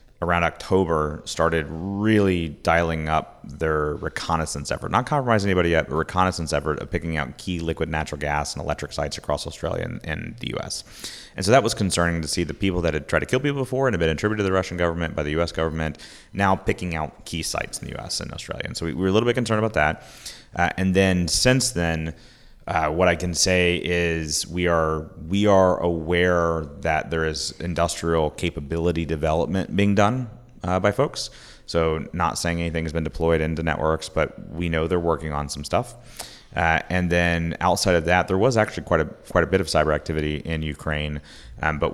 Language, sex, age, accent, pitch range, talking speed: English, male, 30-49, American, 80-90 Hz, 210 wpm